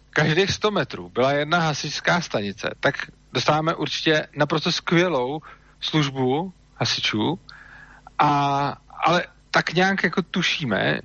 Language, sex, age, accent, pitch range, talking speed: Czech, male, 40-59, native, 145-180 Hz, 110 wpm